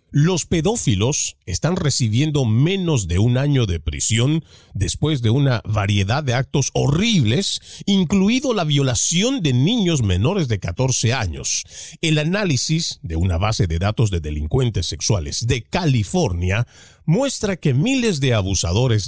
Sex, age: male, 40-59